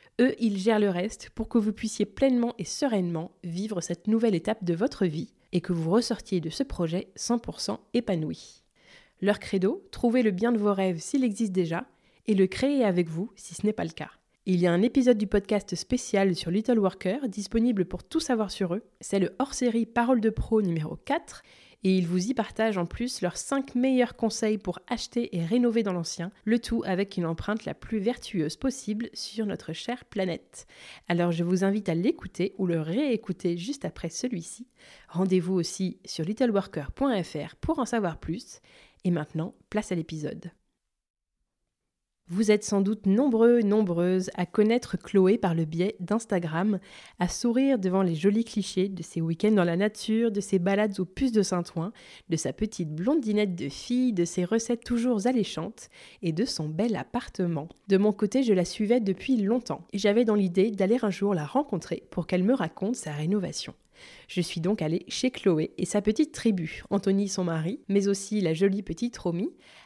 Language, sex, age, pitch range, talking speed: French, female, 20-39, 180-230 Hz, 190 wpm